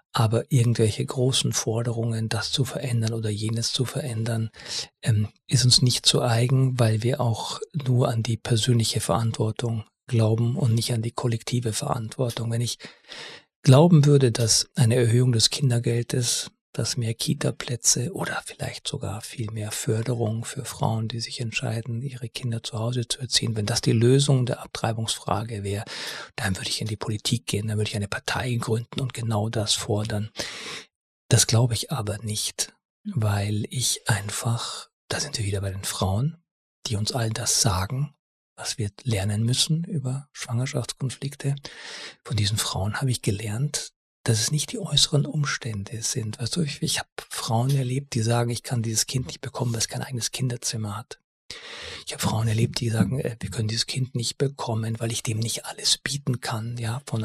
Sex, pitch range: male, 110-130 Hz